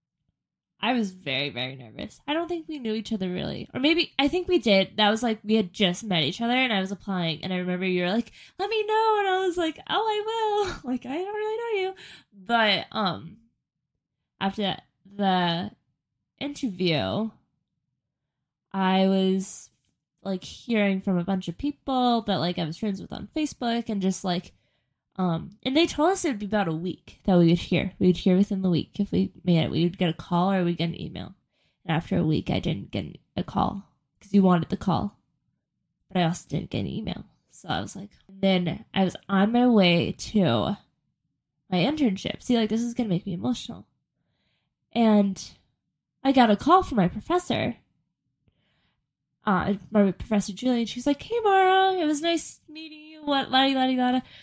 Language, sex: English, female